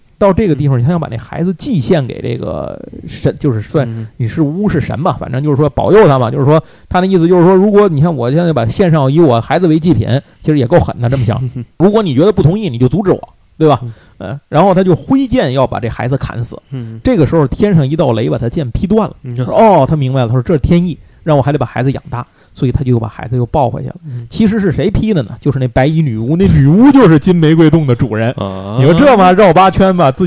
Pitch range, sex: 130-185 Hz, male